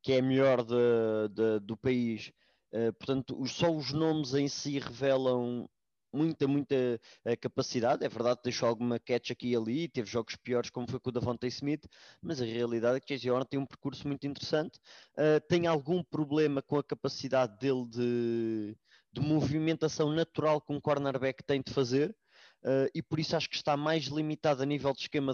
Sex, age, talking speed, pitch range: male, 20-39, 195 wpm, 125-145 Hz